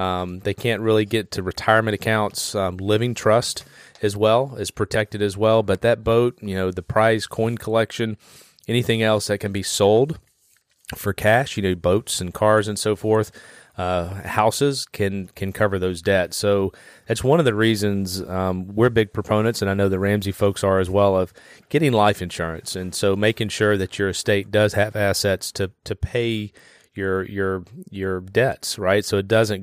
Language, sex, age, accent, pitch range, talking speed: English, male, 30-49, American, 95-110 Hz, 190 wpm